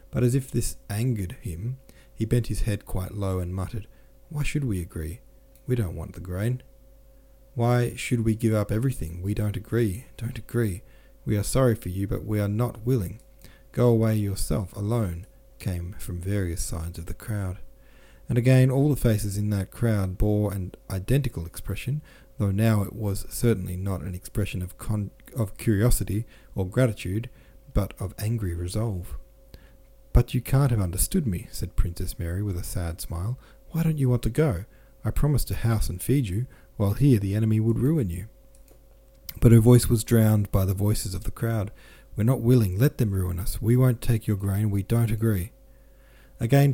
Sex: male